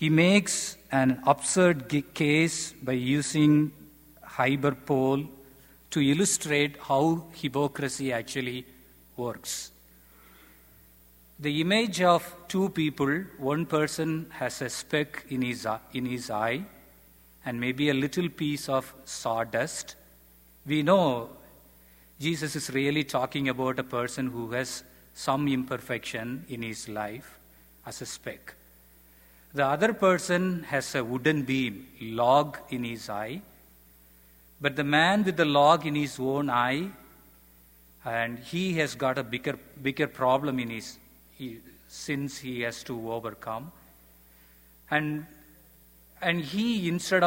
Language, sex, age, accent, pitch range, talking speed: English, male, 50-69, Indian, 110-150 Hz, 115 wpm